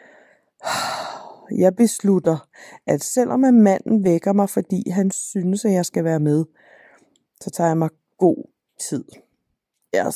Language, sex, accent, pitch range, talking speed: Danish, female, native, 155-200 Hz, 135 wpm